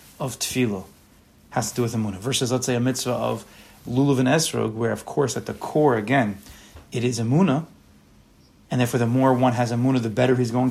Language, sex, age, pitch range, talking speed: English, male, 30-49, 115-140 Hz, 205 wpm